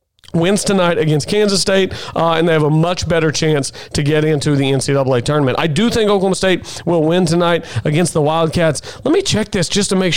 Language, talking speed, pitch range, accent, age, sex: English, 220 wpm, 145-185 Hz, American, 40-59, male